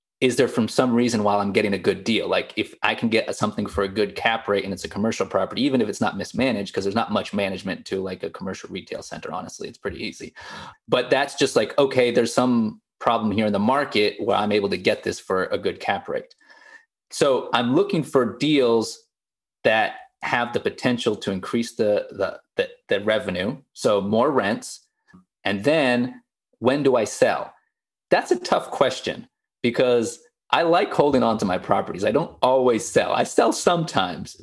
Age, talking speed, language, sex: 30-49, 200 wpm, English, male